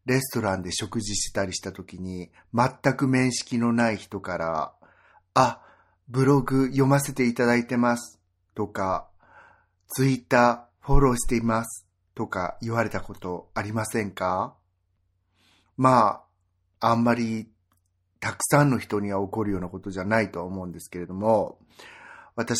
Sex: male